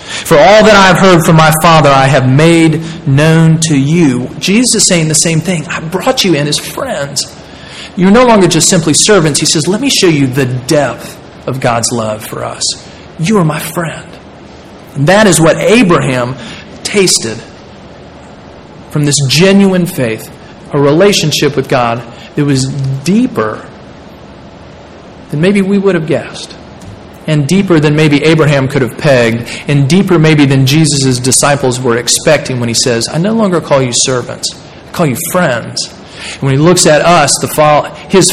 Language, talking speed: English, 170 wpm